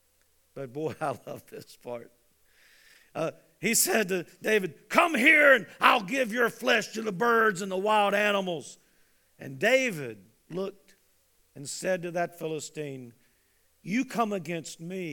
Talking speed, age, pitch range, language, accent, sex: 145 wpm, 50-69, 195-280 Hz, English, American, male